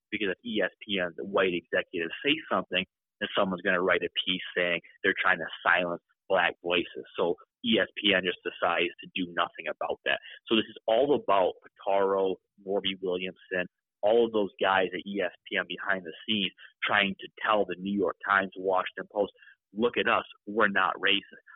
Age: 30-49